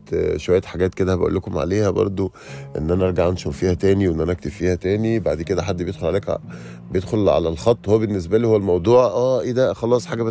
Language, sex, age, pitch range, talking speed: Arabic, male, 30-49, 80-105 Hz, 215 wpm